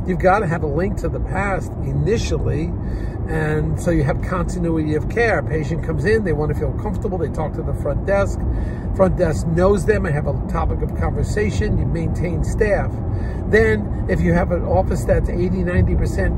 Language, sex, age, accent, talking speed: English, male, 50-69, American, 190 wpm